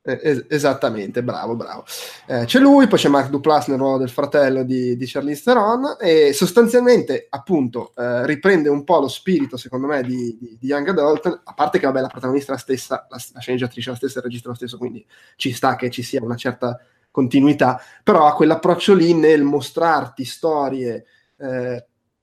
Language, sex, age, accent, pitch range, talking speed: Italian, male, 20-39, native, 130-165 Hz, 190 wpm